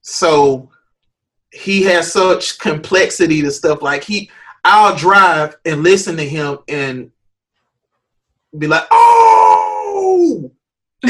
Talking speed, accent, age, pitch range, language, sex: 105 wpm, American, 20-39, 135-205 Hz, English, male